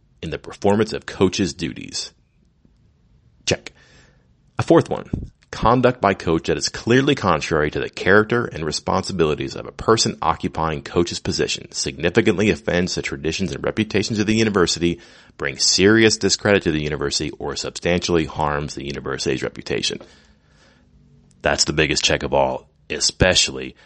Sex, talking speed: male, 140 wpm